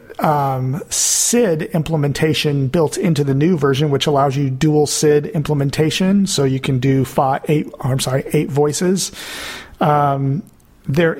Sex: male